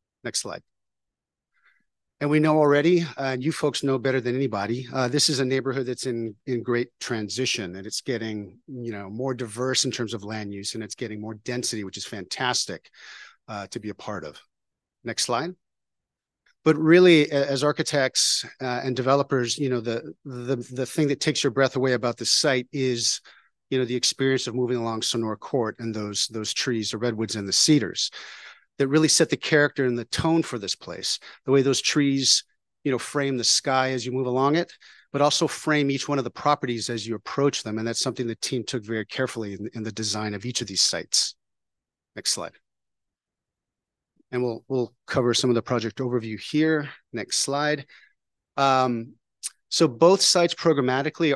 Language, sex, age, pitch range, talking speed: English, male, 40-59, 115-140 Hz, 195 wpm